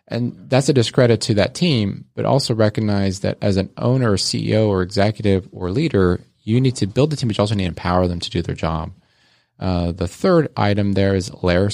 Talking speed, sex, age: 225 wpm, male, 30-49